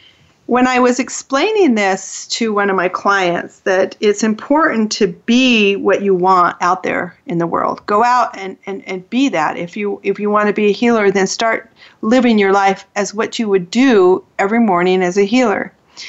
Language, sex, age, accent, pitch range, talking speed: English, female, 40-59, American, 185-235 Hz, 200 wpm